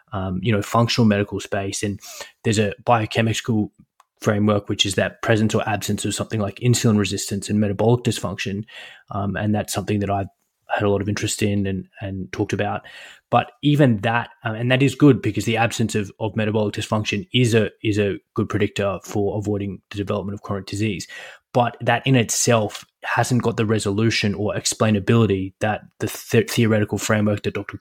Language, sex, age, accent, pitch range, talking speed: English, male, 20-39, Australian, 100-115 Hz, 185 wpm